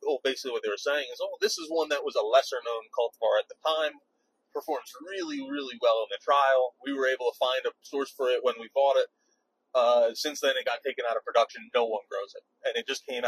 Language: English